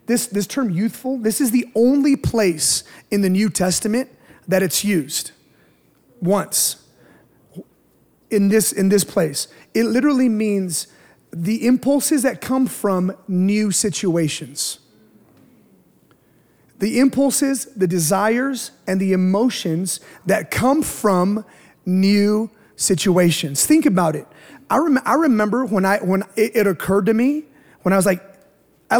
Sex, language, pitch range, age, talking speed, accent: male, English, 180-245 Hz, 30-49, 130 wpm, American